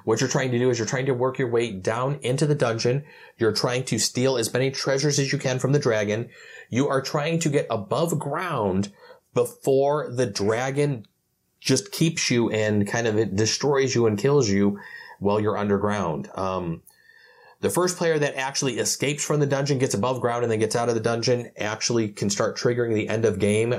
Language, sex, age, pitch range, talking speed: English, male, 30-49, 105-135 Hz, 205 wpm